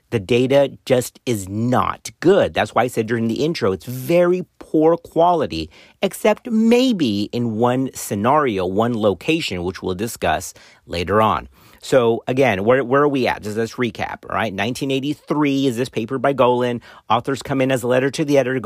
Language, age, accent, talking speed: English, 40-59, American, 180 wpm